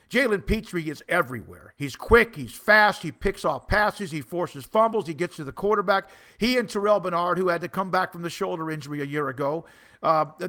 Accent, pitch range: American, 165-210 Hz